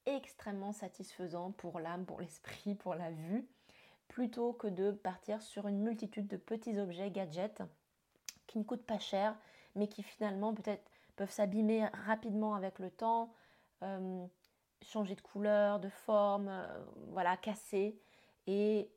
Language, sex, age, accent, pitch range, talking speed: French, female, 20-39, French, 200-225 Hz, 140 wpm